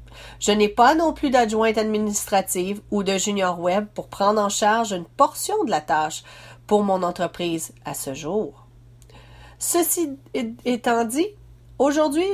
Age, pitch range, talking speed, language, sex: 40-59, 165-235 Hz, 145 wpm, French, female